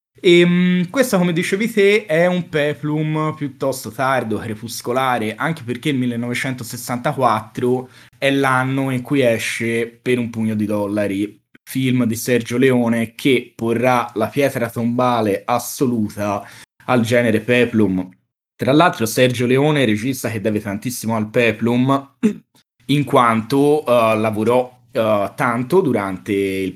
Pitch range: 110-150 Hz